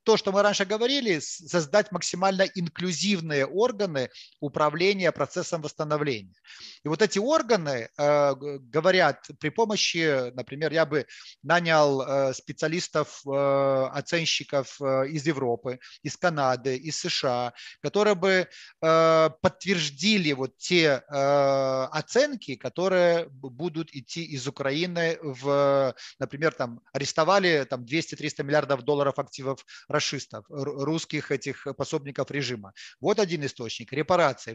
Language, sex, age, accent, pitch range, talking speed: Ukrainian, male, 30-49, native, 140-180 Hz, 100 wpm